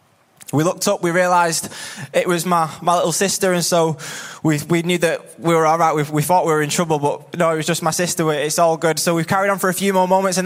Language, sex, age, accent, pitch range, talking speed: English, male, 20-39, British, 155-185 Hz, 270 wpm